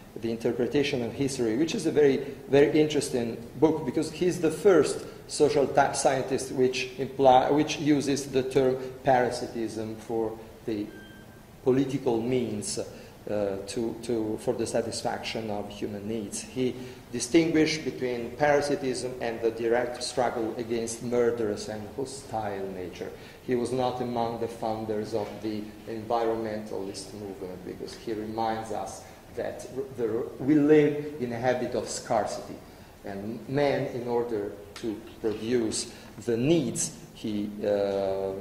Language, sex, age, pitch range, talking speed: English, male, 40-59, 110-135 Hz, 130 wpm